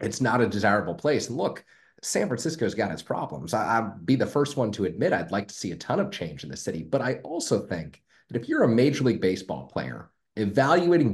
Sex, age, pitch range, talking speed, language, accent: male, 30-49, 100-130 Hz, 235 wpm, English, American